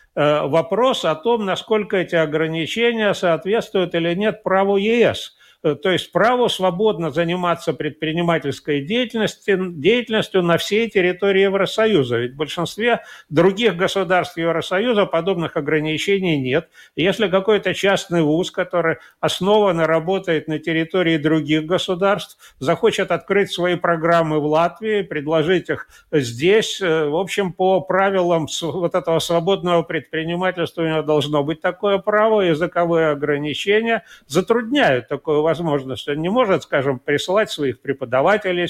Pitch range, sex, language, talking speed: 155-195 Hz, male, Russian, 120 wpm